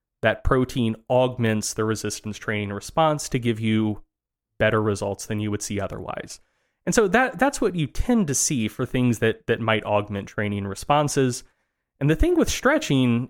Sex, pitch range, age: male, 105-135 Hz, 20-39